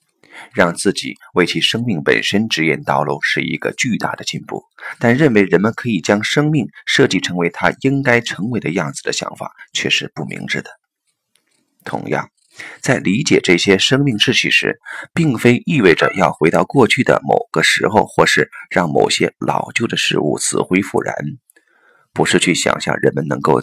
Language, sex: Chinese, male